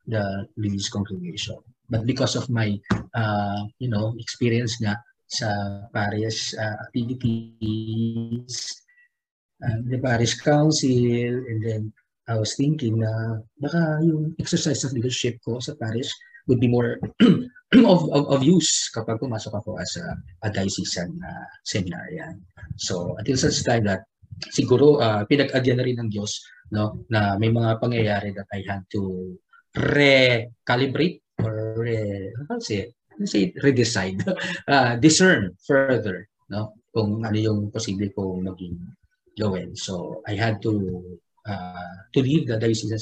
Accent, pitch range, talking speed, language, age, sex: native, 105-130 Hz, 135 wpm, Filipino, 20-39, male